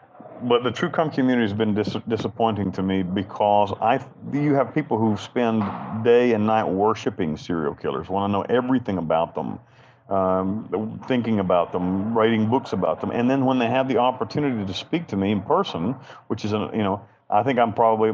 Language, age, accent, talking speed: English, 40-59, American, 195 wpm